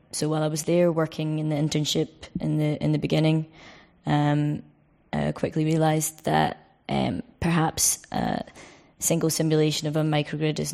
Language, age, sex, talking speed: English, 20-39, female, 155 wpm